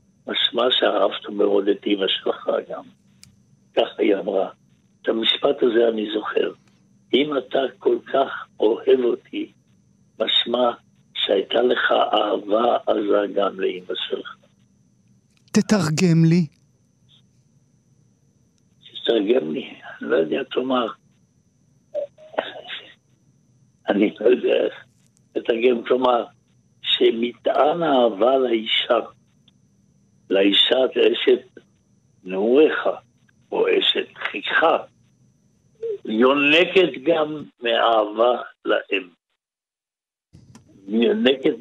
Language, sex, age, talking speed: Hebrew, male, 60-79, 80 wpm